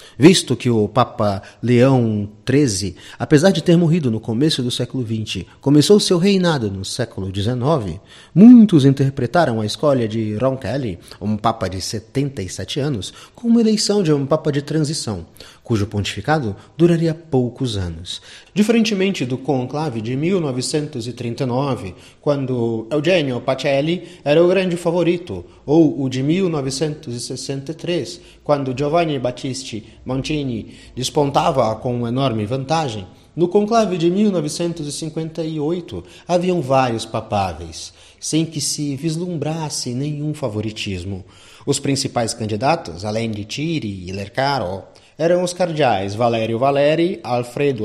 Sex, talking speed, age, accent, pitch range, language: male, 120 wpm, 30-49, Brazilian, 110-160 Hz, Portuguese